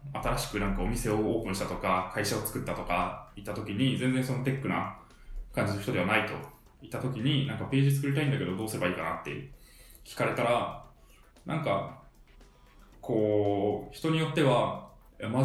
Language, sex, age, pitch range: Japanese, male, 20-39, 105-140 Hz